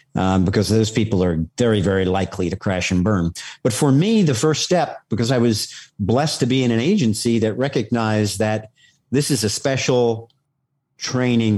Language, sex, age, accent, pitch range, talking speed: English, male, 50-69, American, 105-130 Hz, 180 wpm